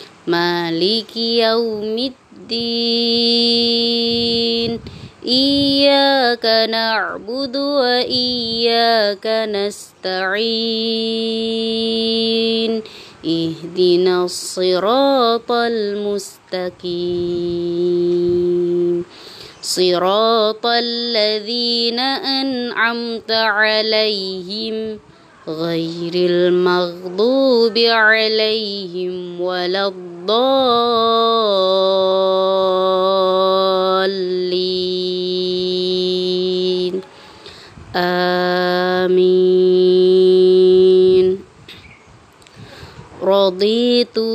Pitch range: 185-235 Hz